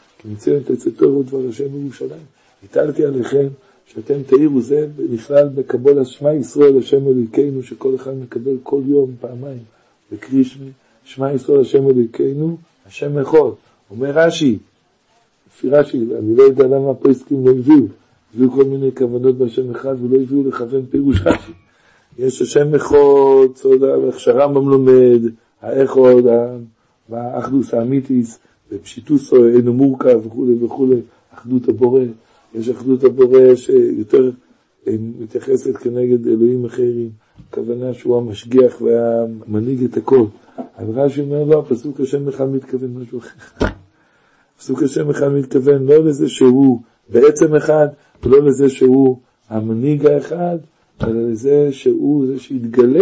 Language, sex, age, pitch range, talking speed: Hebrew, male, 50-69, 125-145 Hz, 125 wpm